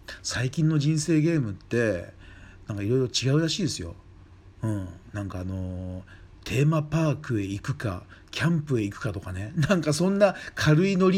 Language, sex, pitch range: Japanese, male, 95-150 Hz